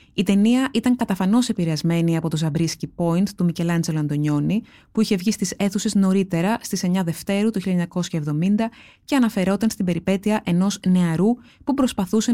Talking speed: 150 wpm